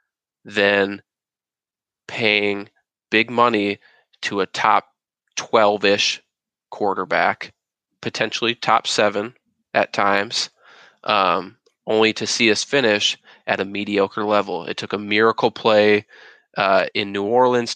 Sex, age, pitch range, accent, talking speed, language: male, 20-39, 100-110 Hz, American, 110 wpm, English